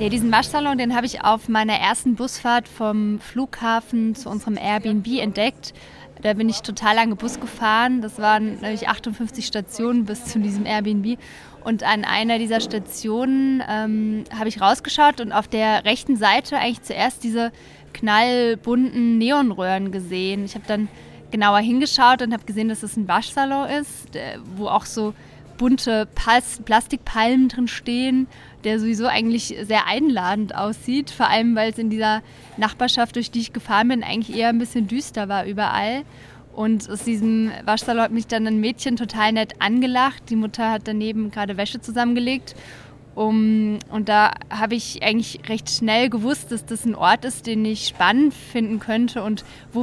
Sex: female